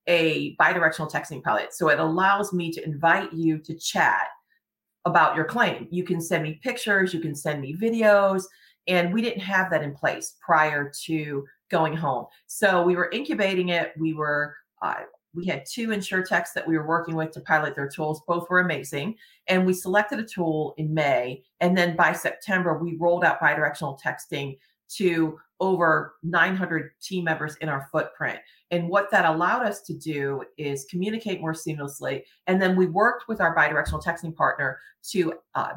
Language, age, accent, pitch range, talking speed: English, 40-59, American, 155-185 Hz, 180 wpm